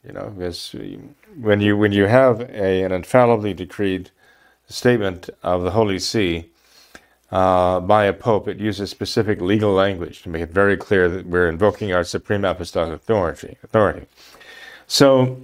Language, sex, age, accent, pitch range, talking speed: English, male, 40-59, American, 95-115 Hz, 155 wpm